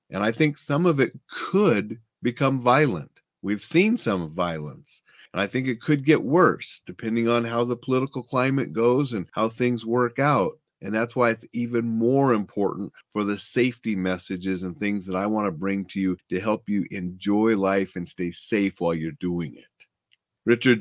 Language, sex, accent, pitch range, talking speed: English, male, American, 95-120 Hz, 185 wpm